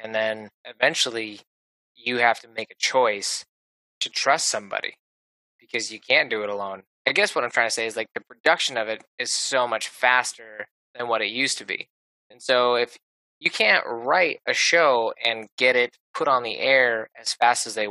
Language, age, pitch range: English, 20-39, 100-125 Hz